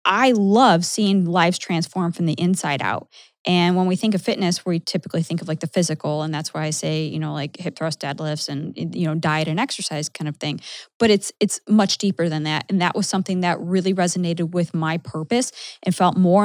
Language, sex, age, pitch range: English, female, 20-39, 165-205 Hz